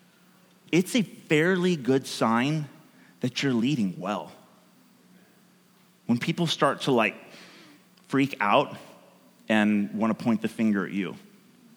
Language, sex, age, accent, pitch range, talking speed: English, male, 30-49, American, 135-195 Hz, 120 wpm